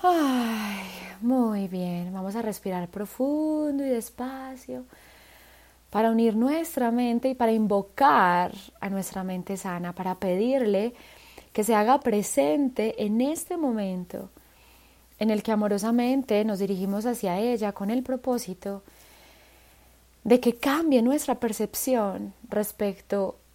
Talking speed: 115 wpm